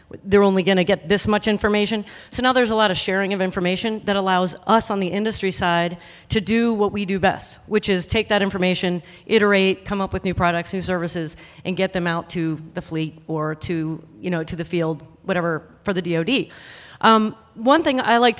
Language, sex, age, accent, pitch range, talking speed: English, female, 30-49, American, 180-215 Hz, 215 wpm